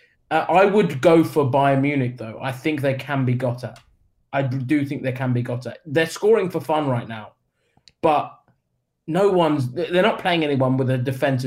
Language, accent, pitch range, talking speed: English, British, 125-150 Hz, 200 wpm